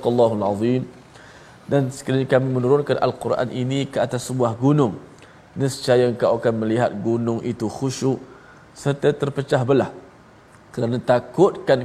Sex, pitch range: male, 110-130 Hz